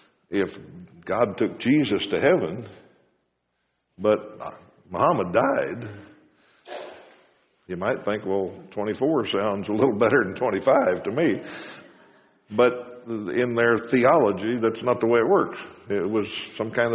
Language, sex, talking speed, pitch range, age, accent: English, male, 125 wpm, 100-125 Hz, 60-79, American